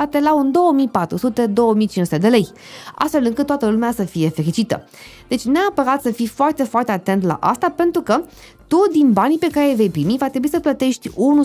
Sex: female